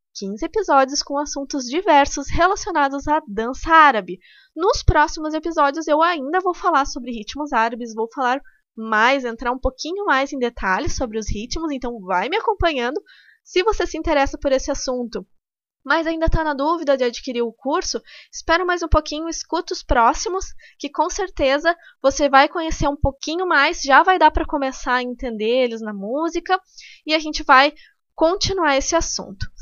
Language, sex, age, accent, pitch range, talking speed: Portuguese, female, 20-39, Brazilian, 245-330 Hz, 170 wpm